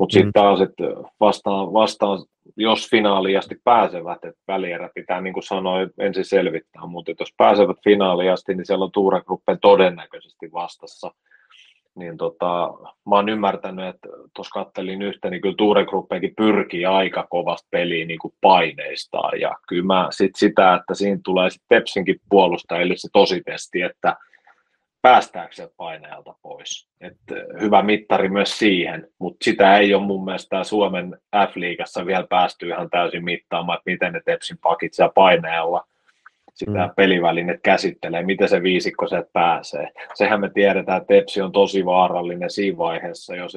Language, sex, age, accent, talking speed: Finnish, male, 30-49, native, 145 wpm